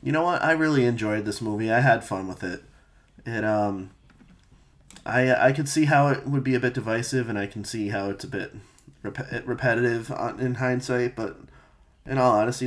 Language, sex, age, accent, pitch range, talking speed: English, male, 20-39, American, 105-130 Hz, 200 wpm